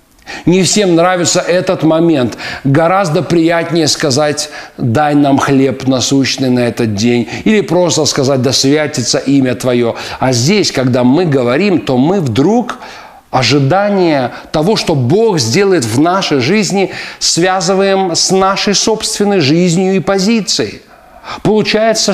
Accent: native